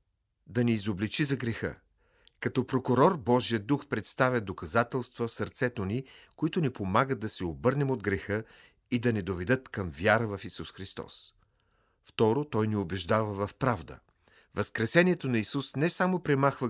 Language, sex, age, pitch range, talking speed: Bulgarian, male, 40-59, 100-130 Hz, 155 wpm